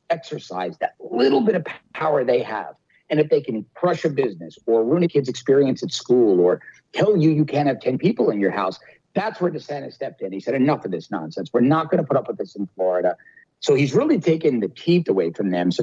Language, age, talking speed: English, 50-69, 240 wpm